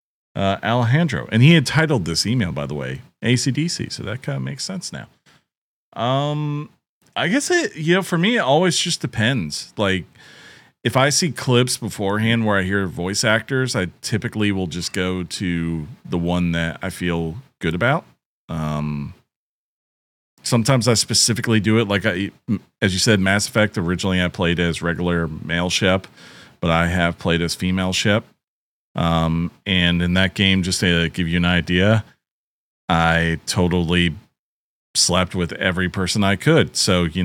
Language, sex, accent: English, male, American